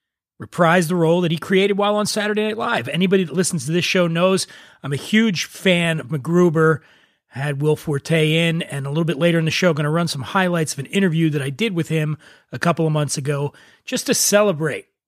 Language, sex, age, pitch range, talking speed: English, male, 30-49, 135-180 Hz, 225 wpm